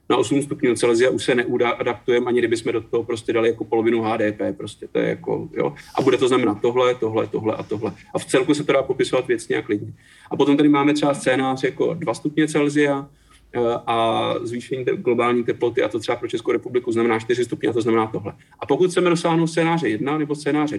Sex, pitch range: male, 120-165 Hz